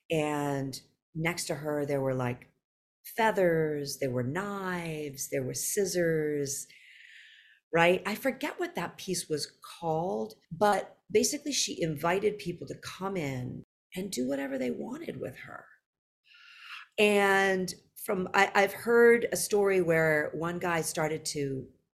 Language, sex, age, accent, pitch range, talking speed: English, female, 40-59, American, 150-210 Hz, 135 wpm